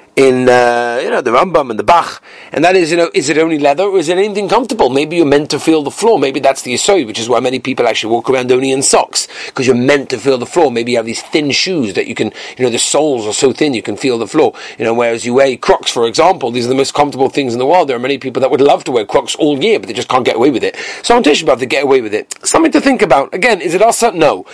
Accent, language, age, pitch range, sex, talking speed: British, English, 40-59, 135-210 Hz, male, 315 wpm